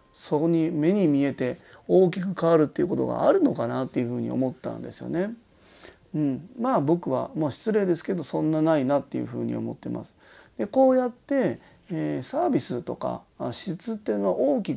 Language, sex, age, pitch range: Japanese, male, 30-49, 130-190 Hz